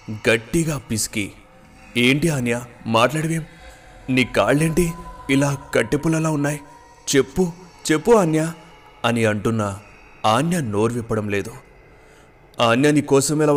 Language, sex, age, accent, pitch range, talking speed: Telugu, male, 30-49, native, 110-155 Hz, 95 wpm